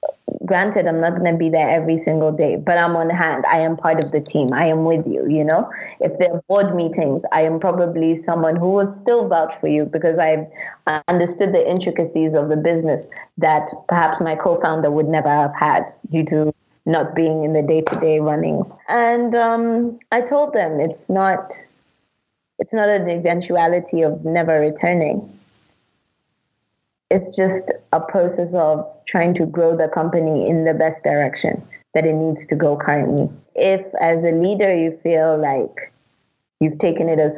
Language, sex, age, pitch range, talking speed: English, female, 20-39, 160-185 Hz, 175 wpm